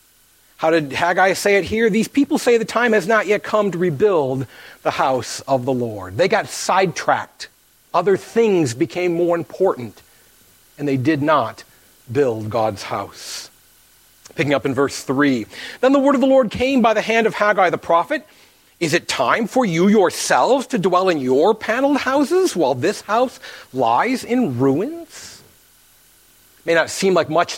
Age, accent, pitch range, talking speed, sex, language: 40-59, American, 150-220 Hz, 170 wpm, male, English